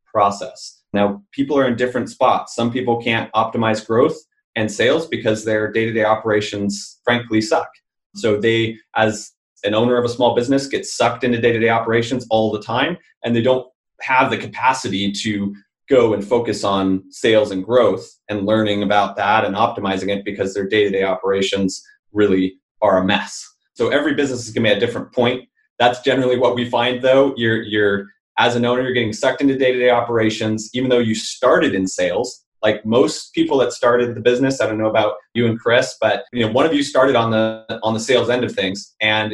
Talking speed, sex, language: 195 wpm, male, English